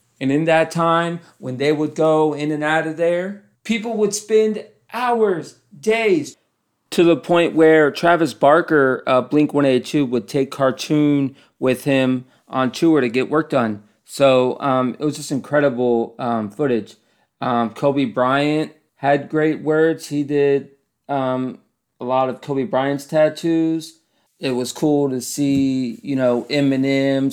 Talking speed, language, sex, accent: 150 wpm, English, male, American